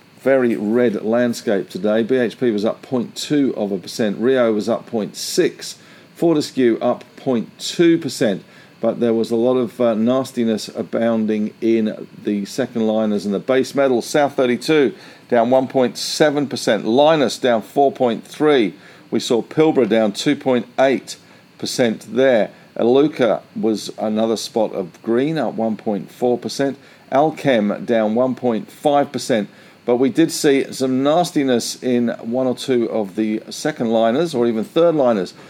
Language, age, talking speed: English, 50-69, 140 wpm